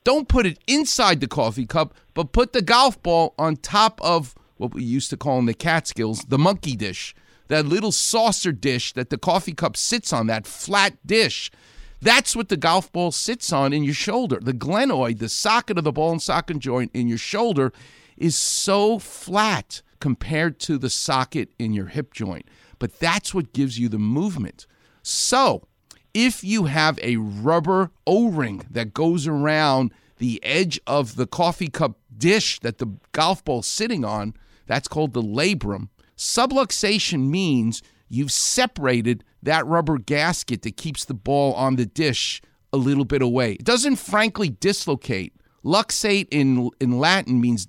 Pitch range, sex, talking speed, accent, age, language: 125-185 Hz, male, 170 wpm, American, 50-69, English